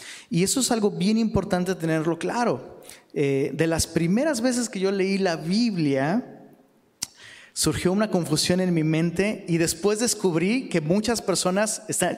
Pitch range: 155-195 Hz